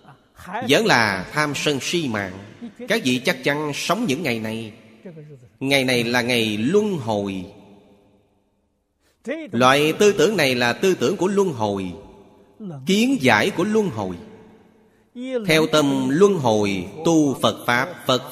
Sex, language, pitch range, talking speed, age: male, Vietnamese, 105-160 Hz, 140 wpm, 30-49